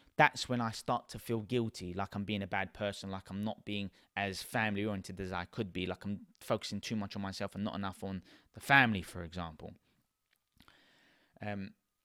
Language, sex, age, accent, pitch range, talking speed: English, male, 20-39, British, 100-130 Hz, 200 wpm